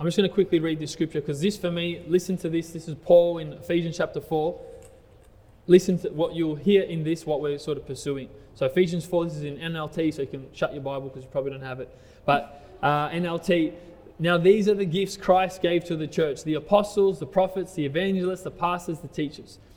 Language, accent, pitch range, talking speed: English, Australian, 155-185 Hz, 230 wpm